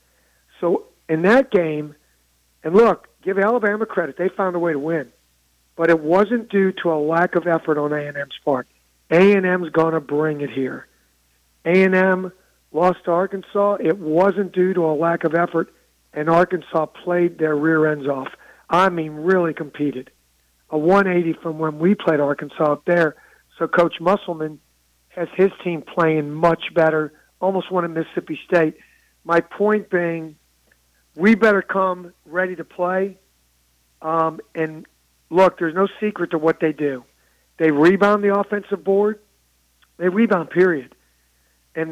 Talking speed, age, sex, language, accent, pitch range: 155 wpm, 50-69, male, English, American, 145-185 Hz